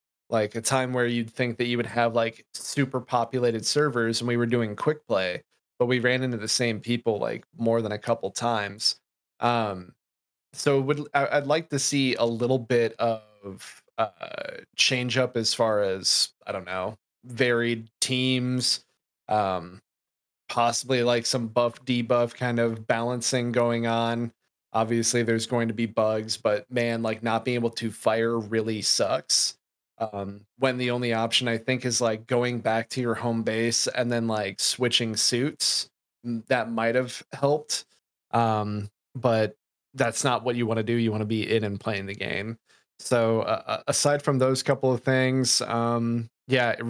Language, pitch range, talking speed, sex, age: English, 115-125 Hz, 170 wpm, male, 30-49